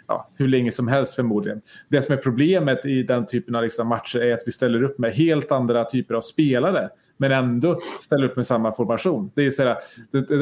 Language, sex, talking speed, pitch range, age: Swedish, male, 215 wpm, 120-145 Hz, 30-49